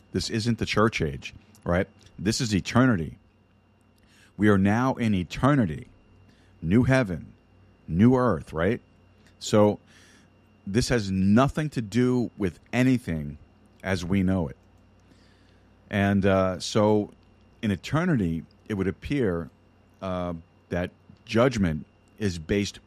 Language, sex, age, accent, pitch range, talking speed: English, male, 40-59, American, 90-110 Hz, 115 wpm